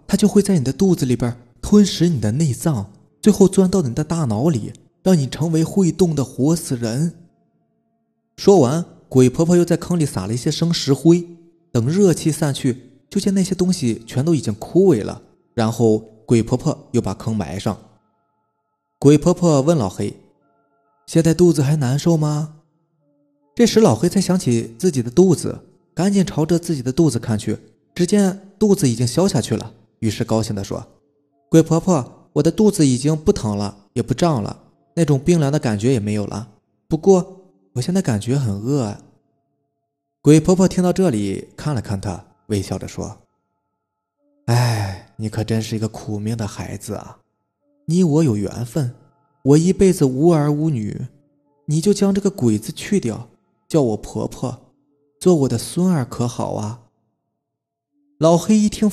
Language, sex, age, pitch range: Chinese, male, 20-39, 115-170 Hz